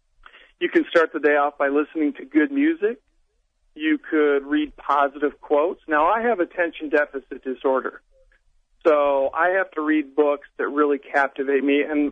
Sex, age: male, 50-69